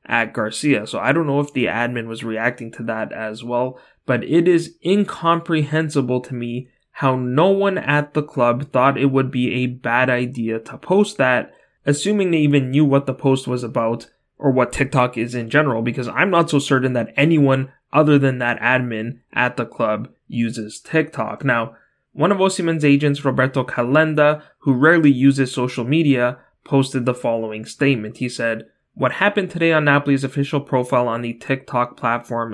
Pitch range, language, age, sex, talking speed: 120-145 Hz, English, 20-39, male, 180 wpm